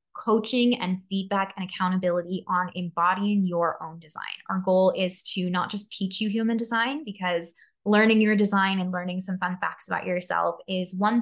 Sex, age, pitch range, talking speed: female, 10-29, 180-205 Hz, 175 wpm